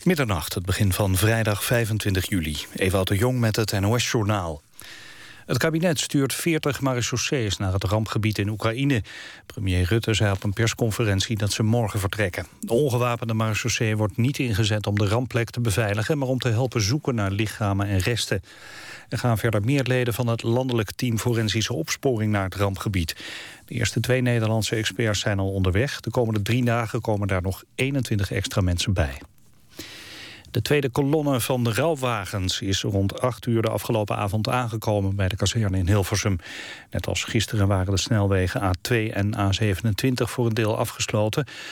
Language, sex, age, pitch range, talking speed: Dutch, male, 40-59, 100-120 Hz, 170 wpm